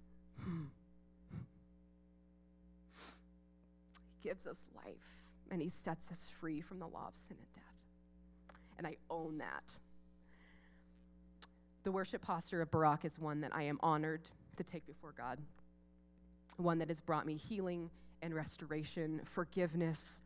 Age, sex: 20-39, female